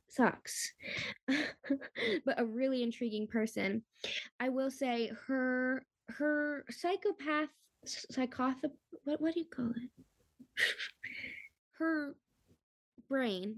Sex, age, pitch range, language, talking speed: female, 20-39, 210-275 Hz, English, 95 wpm